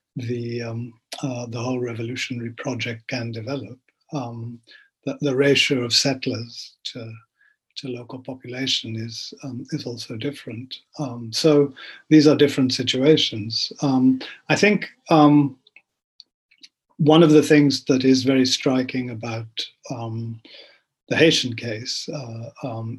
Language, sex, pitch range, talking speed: English, male, 120-140 Hz, 130 wpm